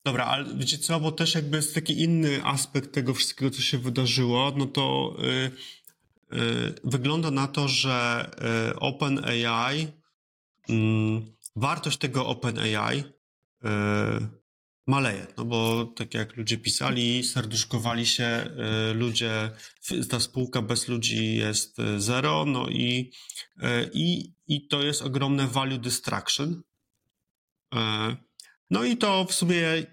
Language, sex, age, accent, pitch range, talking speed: Polish, male, 30-49, native, 115-145 Hz, 130 wpm